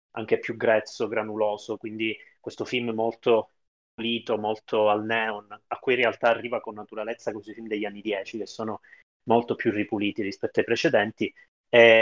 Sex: male